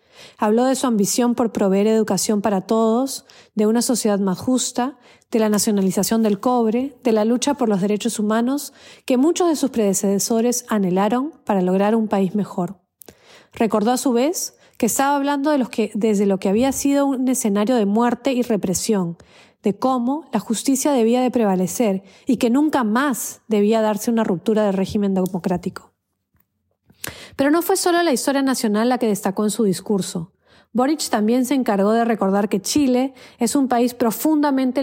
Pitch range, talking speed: 205-255 Hz, 175 wpm